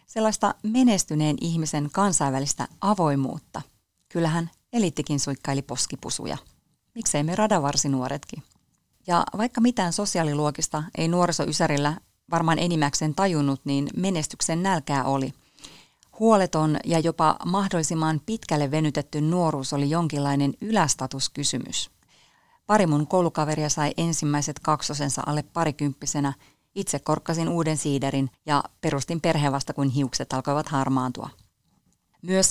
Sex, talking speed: female, 105 wpm